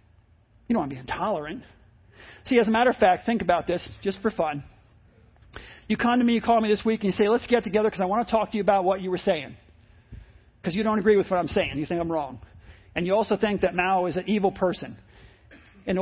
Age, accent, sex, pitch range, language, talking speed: 40-59, American, male, 150-235 Hz, English, 255 wpm